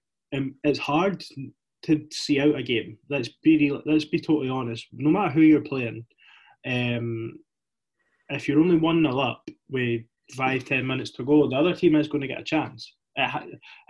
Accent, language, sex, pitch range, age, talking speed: British, English, male, 120-150 Hz, 20-39, 175 wpm